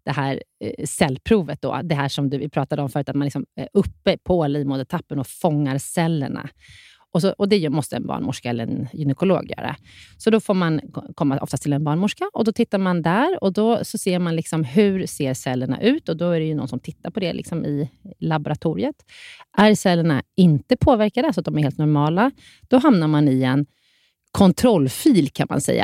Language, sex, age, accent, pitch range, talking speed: Swedish, female, 30-49, native, 145-200 Hz, 210 wpm